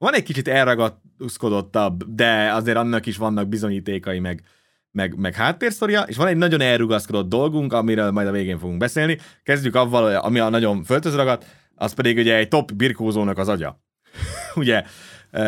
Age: 30-49